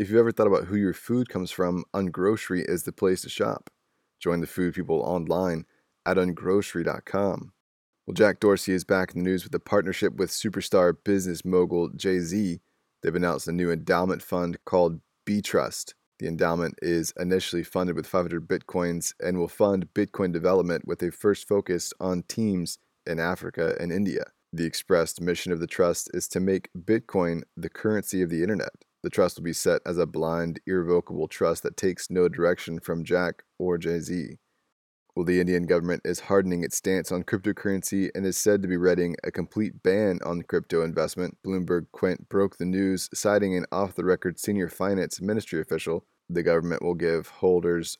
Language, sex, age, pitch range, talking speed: English, male, 20-39, 85-95 Hz, 180 wpm